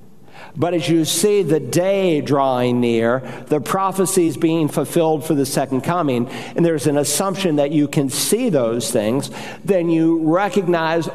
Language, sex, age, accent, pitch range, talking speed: English, male, 50-69, American, 130-160 Hz, 155 wpm